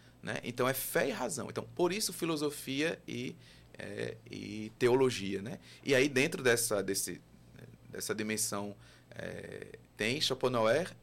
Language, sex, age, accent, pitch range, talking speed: Portuguese, male, 20-39, Brazilian, 105-145 Hz, 135 wpm